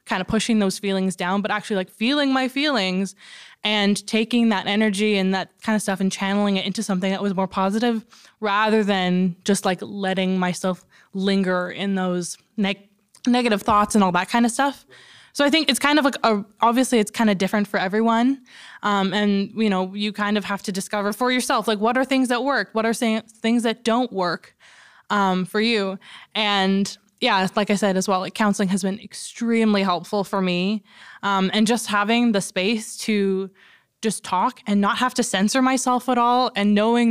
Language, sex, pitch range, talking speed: English, female, 195-230 Hz, 195 wpm